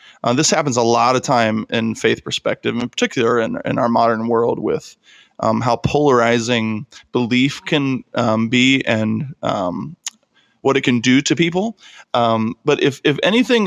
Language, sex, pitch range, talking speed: English, male, 125-165 Hz, 165 wpm